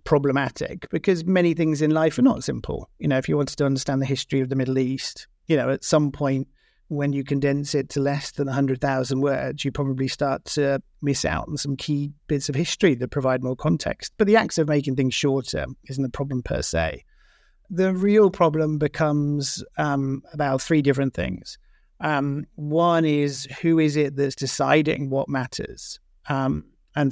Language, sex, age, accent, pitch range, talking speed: English, male, 50-69, British, 135-150 Hz, 195 wpm